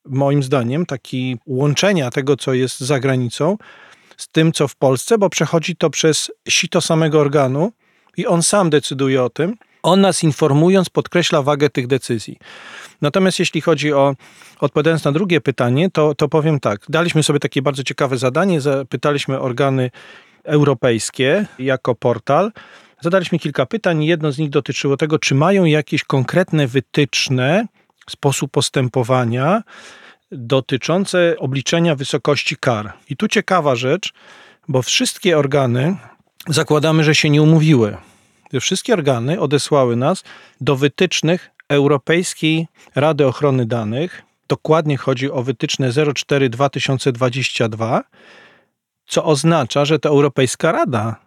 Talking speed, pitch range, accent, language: 130 wpm, 135-165 Hz, native, Polish